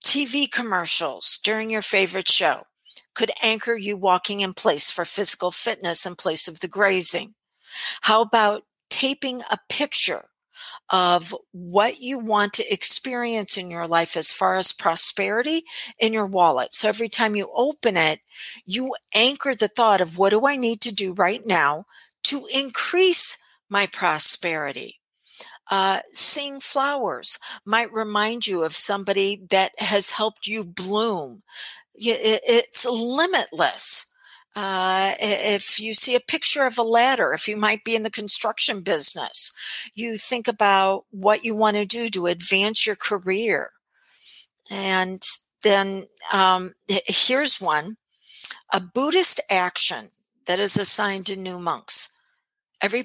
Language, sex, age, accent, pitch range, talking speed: English, female, 50-69, American, 190-240 Hz, 140 wpm